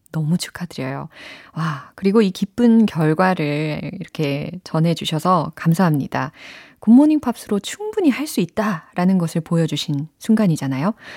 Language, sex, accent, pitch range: Korean, female, native, 150-220 Hz